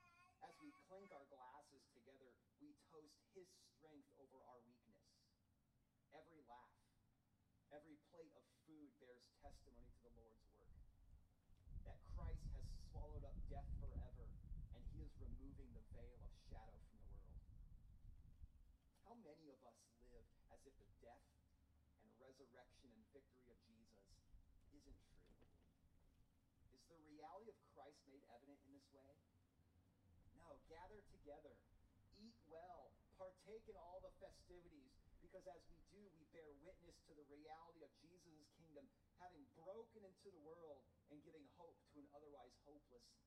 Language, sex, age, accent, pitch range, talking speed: English, male, 30-49, American, 100-150 Hz, 145 wpm